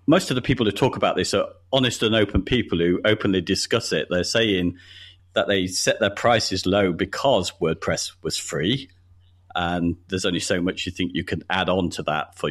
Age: 40-59